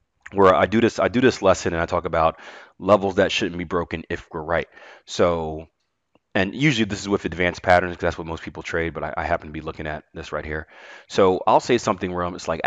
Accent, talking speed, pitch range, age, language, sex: American, 245 wpm, 85-125 Hz, 30-49, English, male